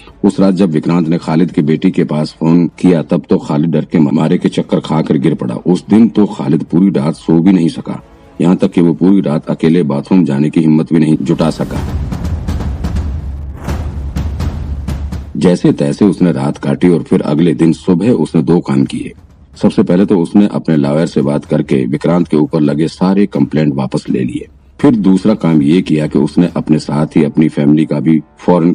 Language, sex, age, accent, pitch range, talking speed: Hindi, male, 50-69, native, 75-90 Hz, 200 wpm